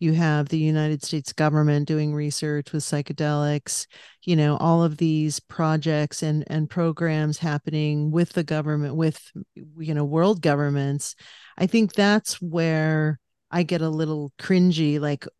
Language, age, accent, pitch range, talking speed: English, 40-59, American, 155-170 Hz, 150 wpm